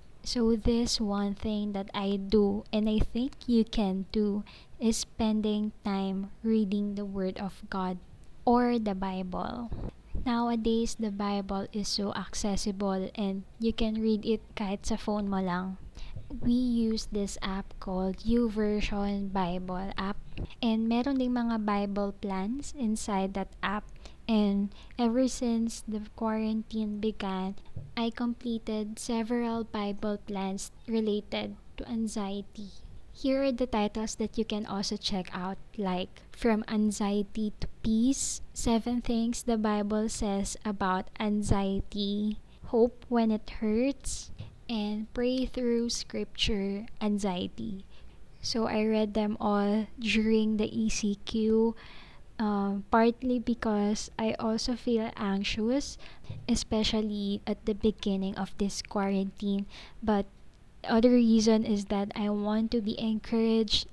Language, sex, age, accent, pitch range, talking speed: Filipino, female, 20-39, native, 200-225 Hz, 125 wpm